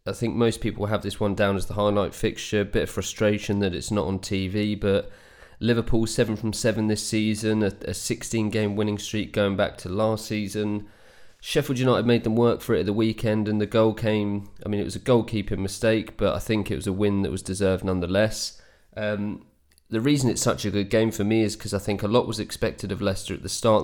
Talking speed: 235 wpm